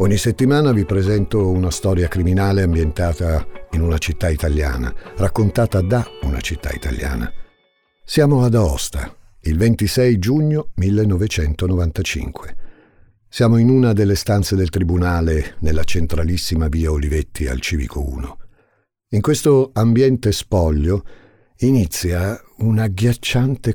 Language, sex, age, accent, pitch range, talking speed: Italian, male, 50-69, native, 80-105 Hz, 115 wpm